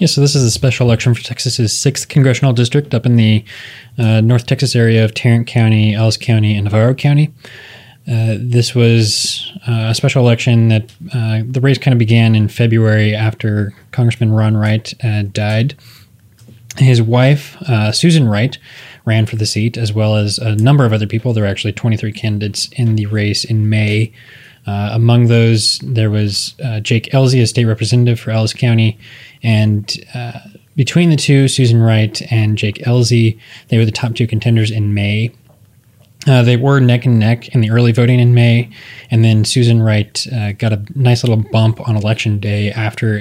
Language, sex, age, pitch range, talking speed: English, male, 20-39, 110-125 Hz, 185 wpm